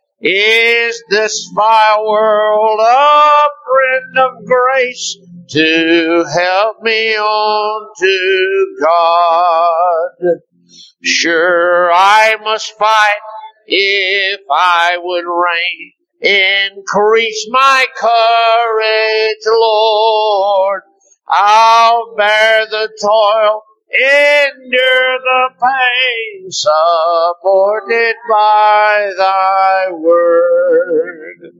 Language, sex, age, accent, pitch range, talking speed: English, male, 60-79, American, 190-235 Hz, 70 wpm